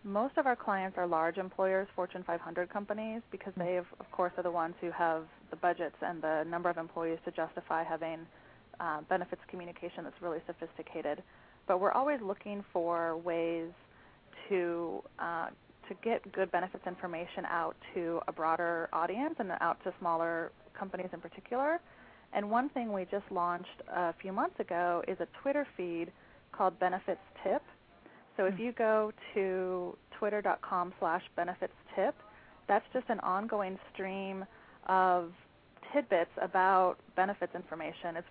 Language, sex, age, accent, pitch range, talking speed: English, female, 20-39, American, 170-195 Hz, 155 wpm